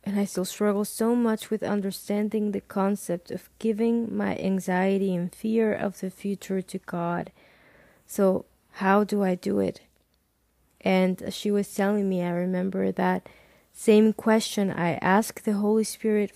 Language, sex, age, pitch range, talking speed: English, female, 20-39, 195-220 Hz, 160 wpm